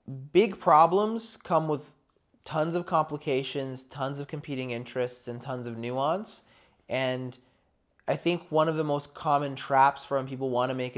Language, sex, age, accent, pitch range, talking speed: English, male, 30-49, American, 130-155 Hz, 165 wpm